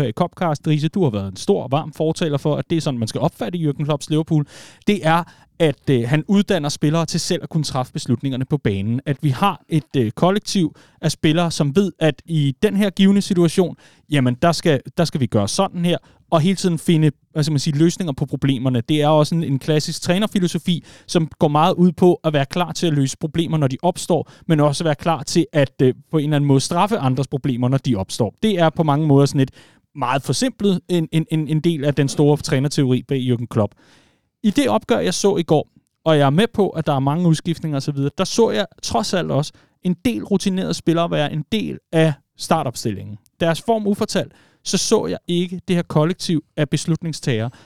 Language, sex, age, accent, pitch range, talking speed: Danish, male, 30-49, native, 140-180 Hz, 220 wpm